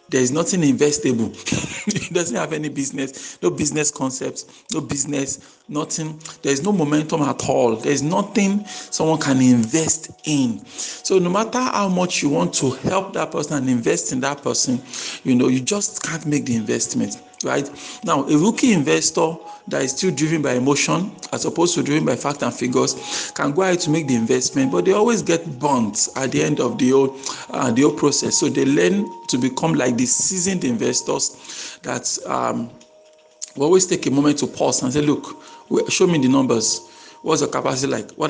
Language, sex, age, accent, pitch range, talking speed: English, male, 50-69, Nigerian, 130-180 Hz, 190 wpm